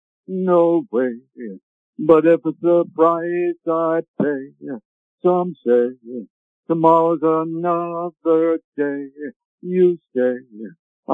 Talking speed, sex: 115 wpm, male